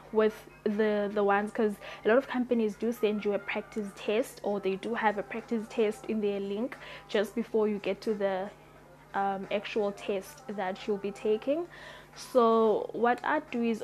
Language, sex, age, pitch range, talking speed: English, female, 10-29, 205-240 Hz, 185 wpm